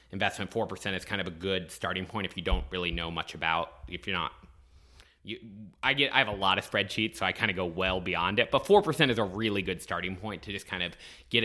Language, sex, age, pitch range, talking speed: English, male, 30-49, 85-110 Hz, 265 wpm